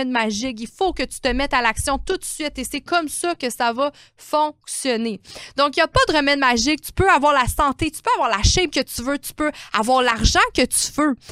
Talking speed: 255 wpm